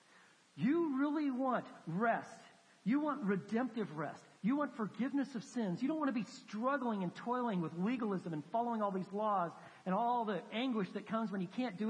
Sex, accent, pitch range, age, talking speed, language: male, American, 175-235 Hz, 50-69, 190 wpm, English